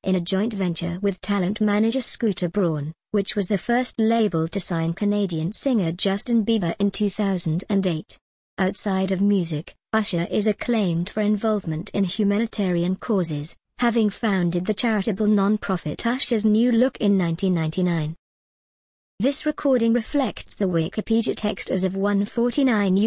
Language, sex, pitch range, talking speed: English, male, 175-215 Hz, 135 wpm